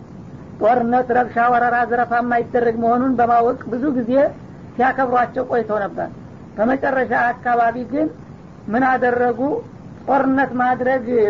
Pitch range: 235-260 Hz